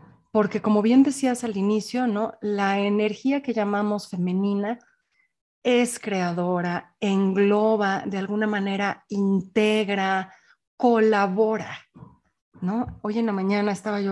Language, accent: Spanish, Mexican